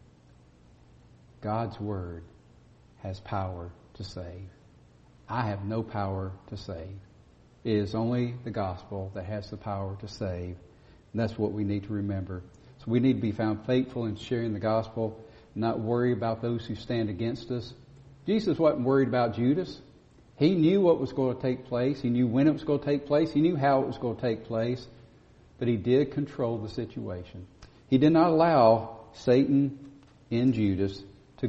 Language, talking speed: English, 180 wpm